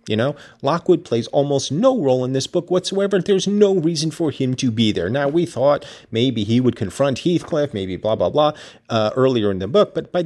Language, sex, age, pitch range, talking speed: English, male, 40-59, 105-150 Hz, 220 wpm